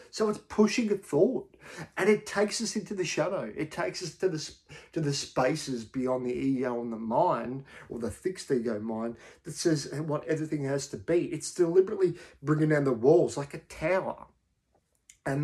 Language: English